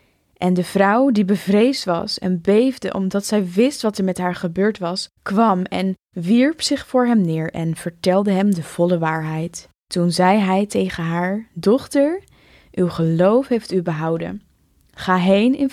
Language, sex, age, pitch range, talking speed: Dutch, female, 10-29, 175-215 Hz, 170 wpm